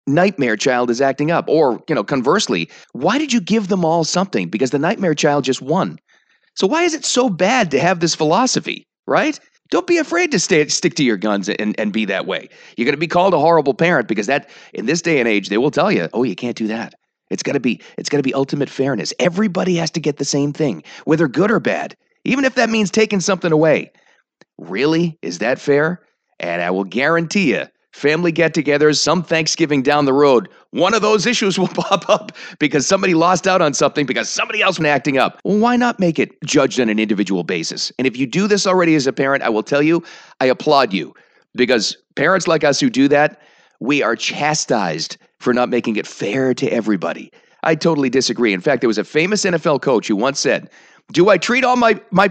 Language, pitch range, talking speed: English, 135-190 Hz, 225 wpm